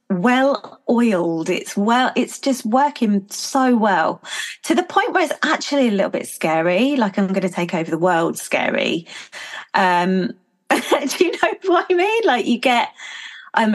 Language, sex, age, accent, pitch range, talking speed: English, female, 20-39, British, 185-275 Hz, 170 wpm